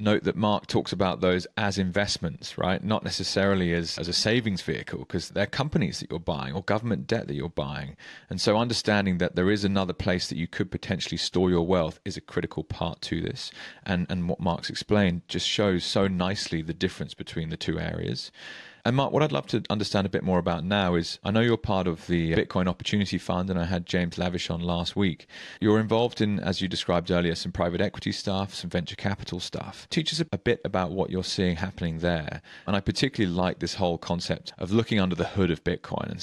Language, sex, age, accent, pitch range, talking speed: English, male, 30-49, British, 85-100 Hz, 220 wpm